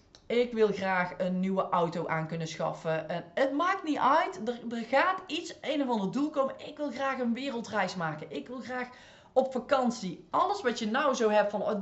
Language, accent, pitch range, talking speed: Dutch, Dutch, 185-265 Hz, 215 wpm